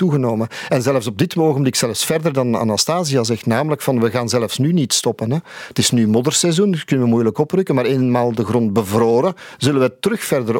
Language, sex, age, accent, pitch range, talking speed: Dutch, male, 50-69, Belgian, 120-150 Hz, 225 wpm